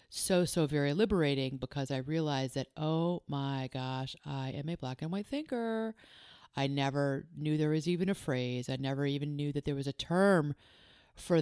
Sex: female